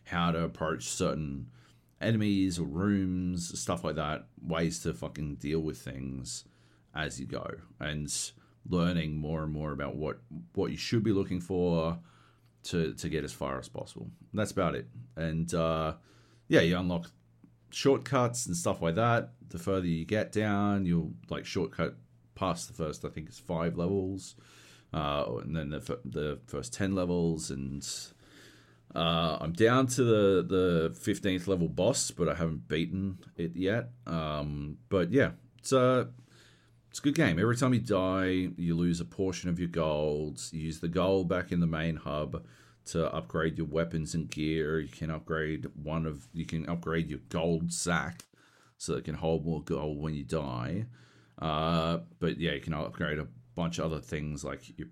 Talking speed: 175 wpm